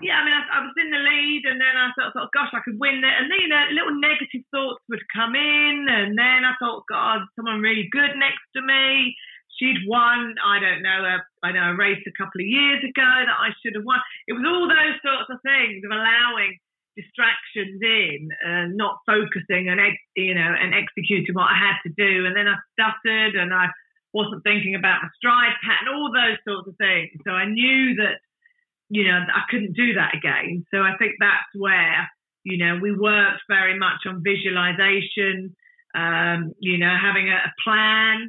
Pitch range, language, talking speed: 185-245 Hz, English, 210 wpm